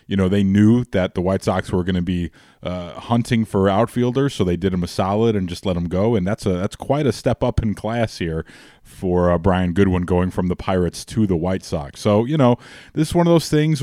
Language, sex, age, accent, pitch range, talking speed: English, male, 20-39, American, 95-115 Hz, 255 wpm